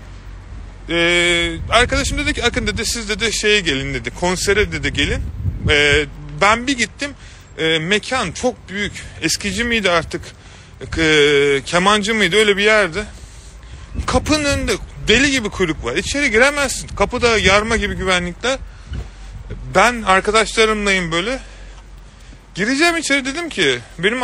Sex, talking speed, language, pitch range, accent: male, 125 wpm, Turkish, 145-230 Hz, native